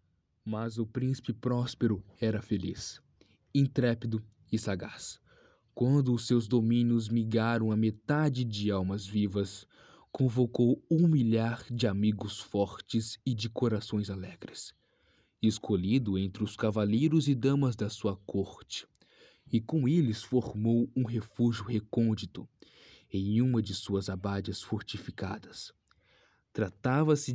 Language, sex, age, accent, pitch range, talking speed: Portuguese, male, 20-39, Brazilian, 105-130 Hz, 115 wpm